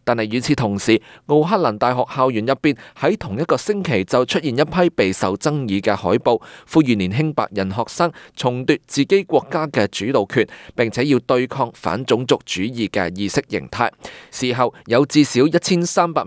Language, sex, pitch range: Chinese, male, 110-150 Hz